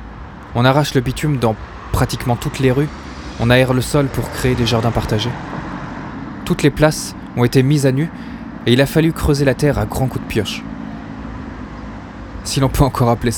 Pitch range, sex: 90-125 Hz, male